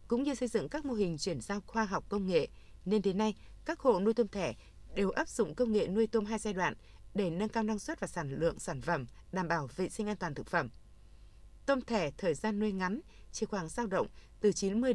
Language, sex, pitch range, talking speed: Vietnamese, female, 180-225 Hz, 245 wpm